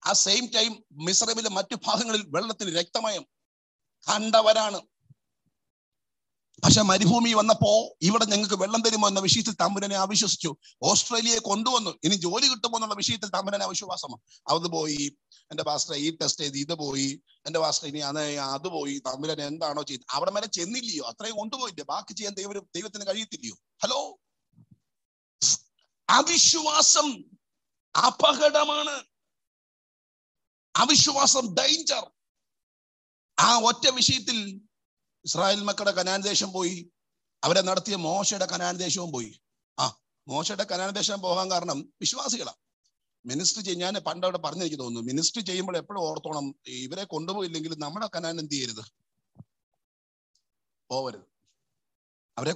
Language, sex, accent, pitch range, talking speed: Malayalam, male, native, 155-220 Hz, 105 wpm